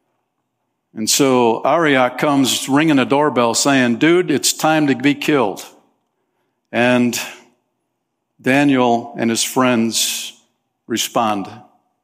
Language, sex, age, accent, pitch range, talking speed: English, male, 50-69, American, 115-140 Hz, 100 wpm